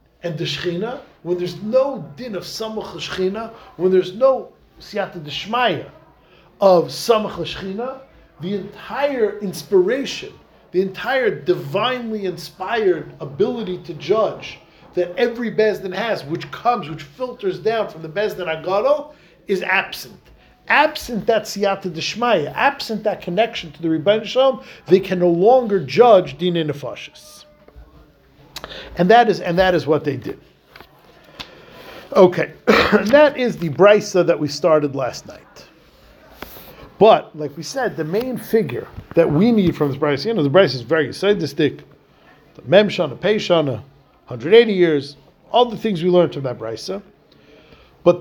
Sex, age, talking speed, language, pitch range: male, 40-59, 145 wpm, English, 165-225 Hz